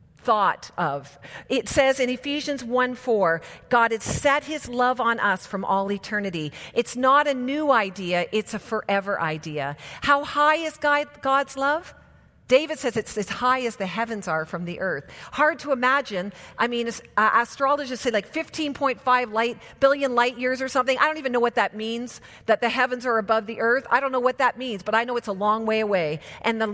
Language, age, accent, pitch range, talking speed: English, 50-69, American, 210-265 Hz, 200 wpm